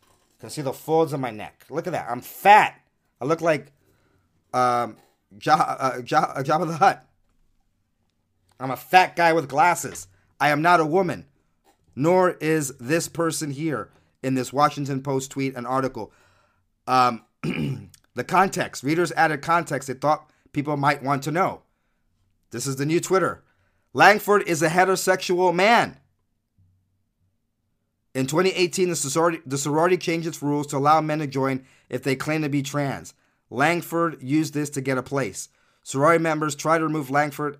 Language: English